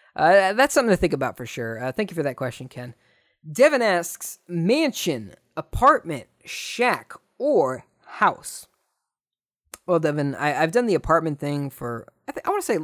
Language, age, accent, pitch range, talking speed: English, 20-39, American, 125-175 Hz, 175 wpm